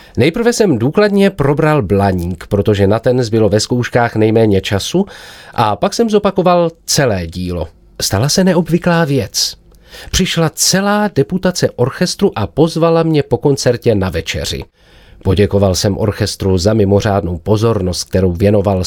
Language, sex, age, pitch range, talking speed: Czech, male, 40-59, 100-165 Hz, 135 wpm